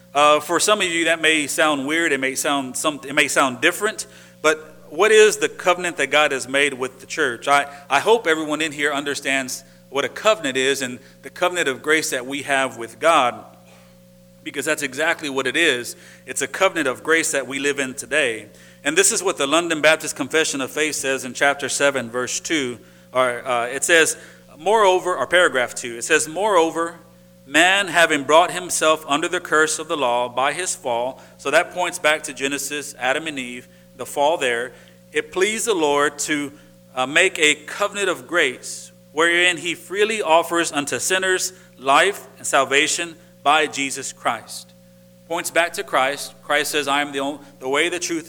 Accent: American